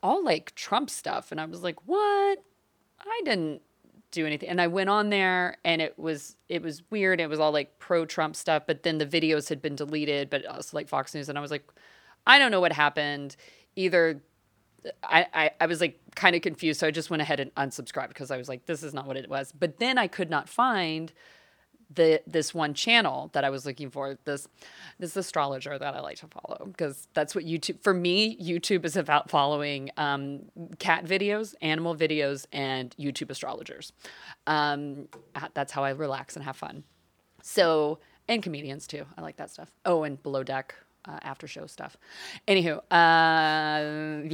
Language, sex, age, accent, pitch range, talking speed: English, female, 30-49, American, 145-175 Hz, 195 wpm